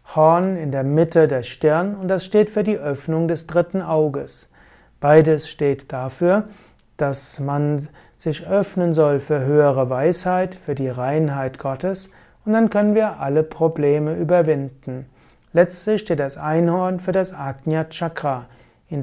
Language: German